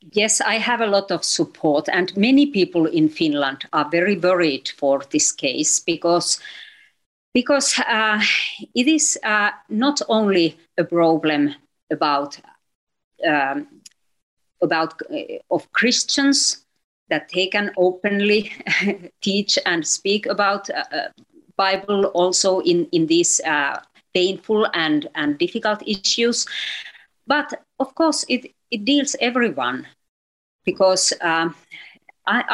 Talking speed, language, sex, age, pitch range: 115 wpm, English, female, 50-69, 180-280 Hz